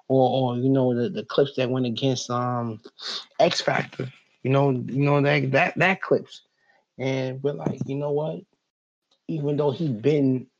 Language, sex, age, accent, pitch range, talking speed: English, male, 20-39, American, 115-135 Hz, 175 wpm